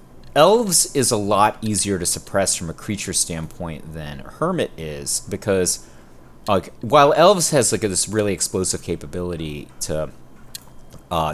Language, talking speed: English, 145 wpm